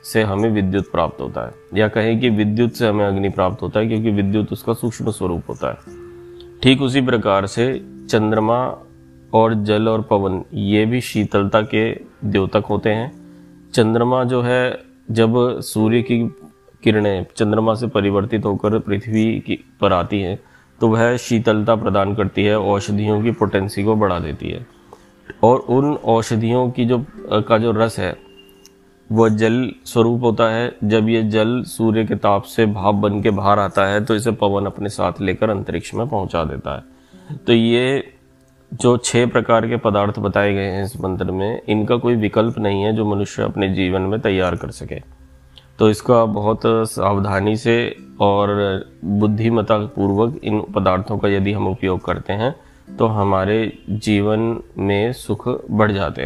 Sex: male